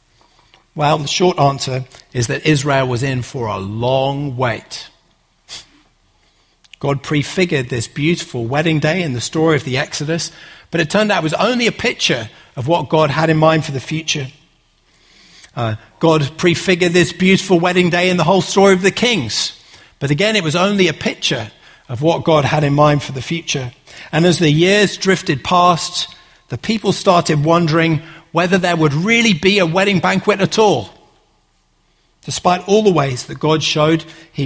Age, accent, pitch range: 50-69, British, 135-175 Hz